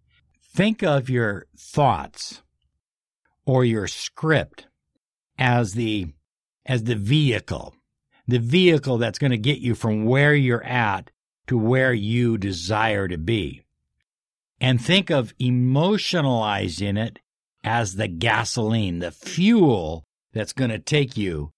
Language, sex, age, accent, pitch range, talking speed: English, male, 60-79, American, 105-145 Hz, 120 wpm